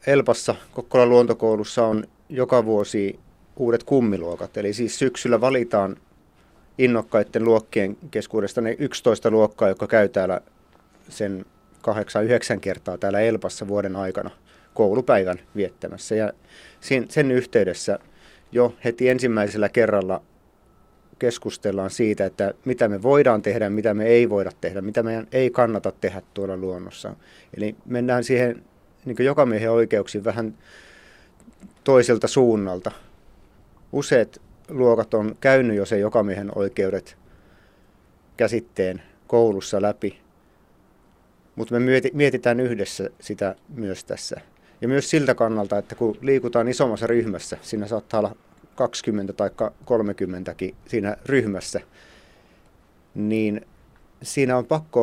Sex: male